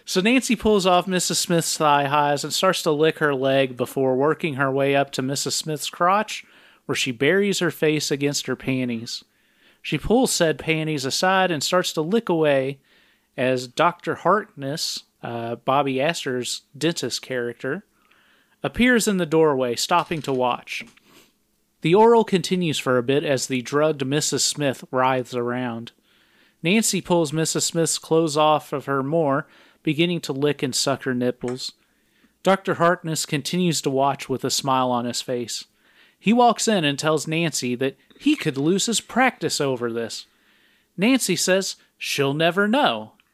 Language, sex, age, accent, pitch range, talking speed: English, male, 40-59, American, 135-180 Hz, 160 wpm